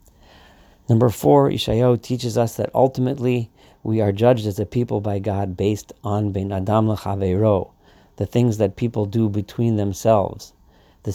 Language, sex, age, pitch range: English, male, 40-59, 100-115 Hz